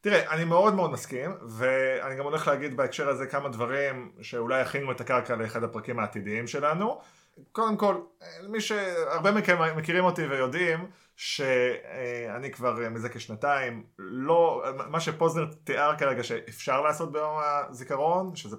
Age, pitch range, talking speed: 30-49, 120-170 Hz, 140 wpm